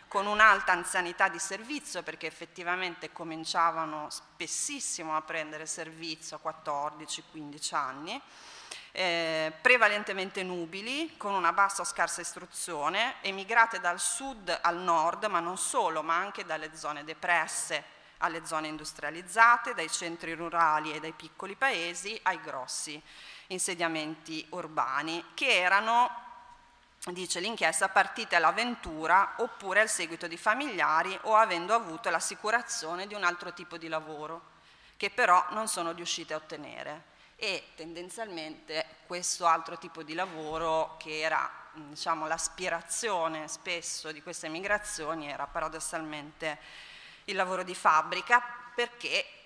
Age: 30-49